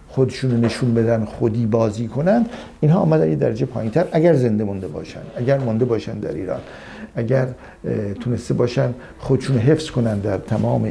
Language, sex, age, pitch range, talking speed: Persian, male, 60-79, 105-135 Hz, 160 wpm